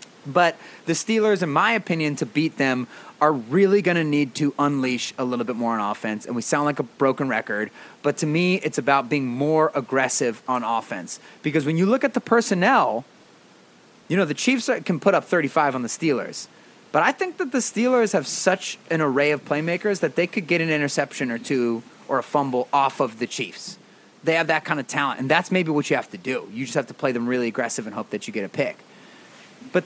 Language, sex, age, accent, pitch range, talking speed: English, male, 30-49, American, 130-190 Hz, 230 wpm